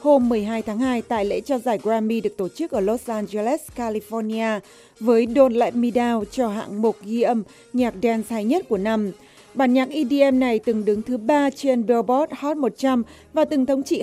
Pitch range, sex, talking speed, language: 220-275 Hz, female, 205 wpm, Vietnamese